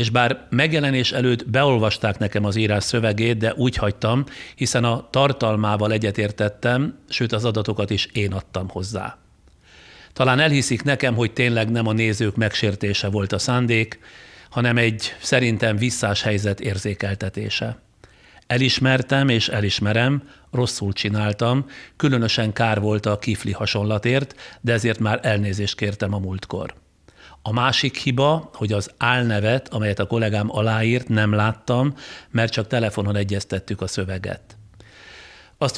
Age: 60-79